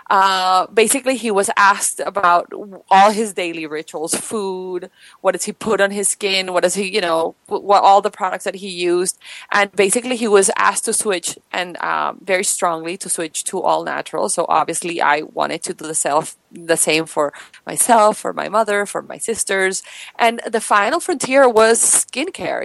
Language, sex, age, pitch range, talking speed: English, female, 20-39, 180-220 Hz, 190 wpm